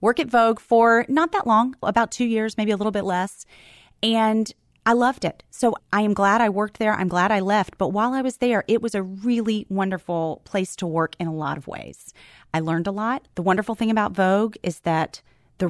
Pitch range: 165-210 Hz